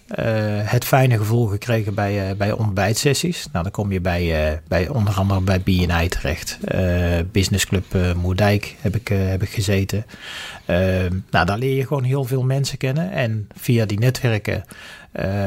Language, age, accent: Dutch, 40-59, Dutch